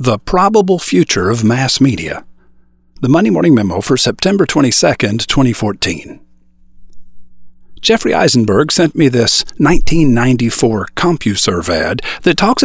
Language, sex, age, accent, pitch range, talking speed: English, male, 40-59, American, 105-165 Hz, 115 wpm